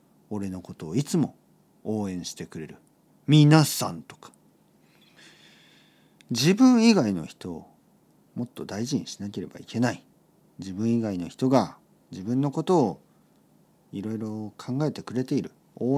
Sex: male